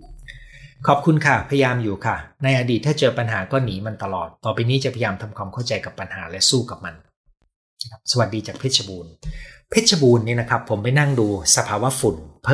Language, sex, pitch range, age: Thai, male, 100-135 Hz, 30-49